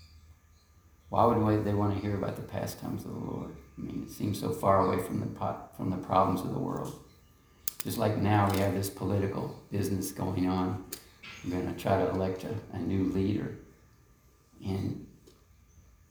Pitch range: 90-110 Hz